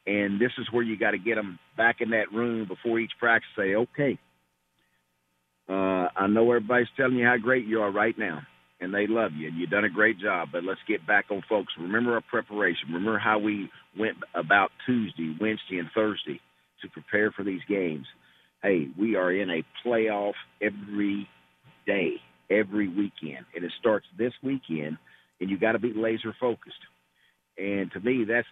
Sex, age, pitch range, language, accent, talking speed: male, 50-69, 95-120 Hz, English, American, 185 wpm